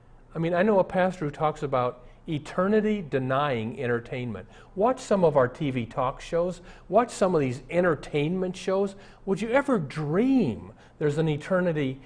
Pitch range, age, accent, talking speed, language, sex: 130-190 Hz, 50-69, American, 160 wpm, English, male